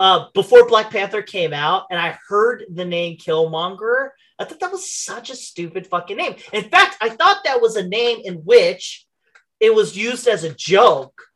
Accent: American